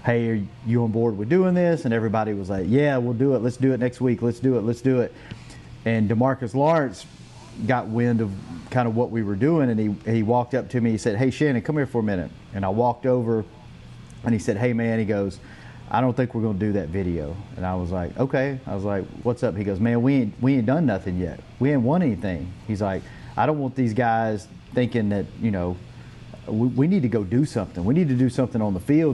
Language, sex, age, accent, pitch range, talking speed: English, male, 30-49, American, 110-130 Hz, 255 wpm